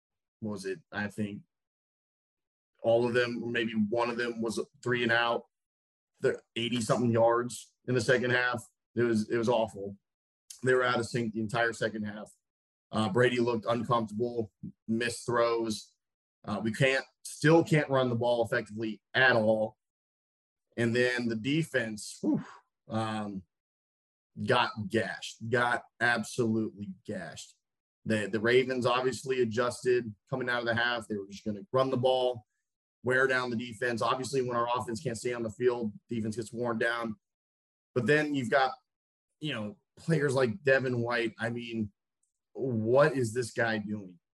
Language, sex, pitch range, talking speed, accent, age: English, male, 110-125 Hz, 155 wpm, American, 30-49